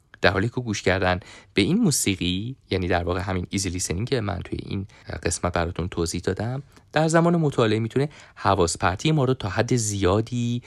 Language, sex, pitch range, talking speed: English, male, 90-110 Hz, 175 wpm